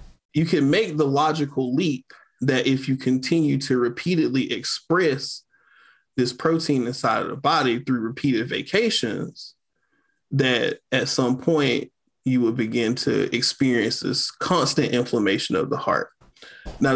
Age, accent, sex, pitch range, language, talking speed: 20-39, American, male, 125-145 Hz, English, 135 wpm